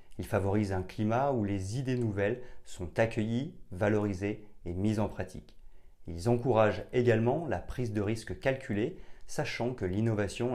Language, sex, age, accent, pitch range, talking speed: French, male, 30-49, French, 95-120 Hz, 150 wpm